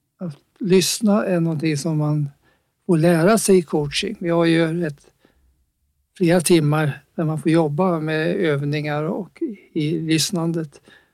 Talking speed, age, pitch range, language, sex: 135 wpm, 60-79, 150-180 Hz, English, male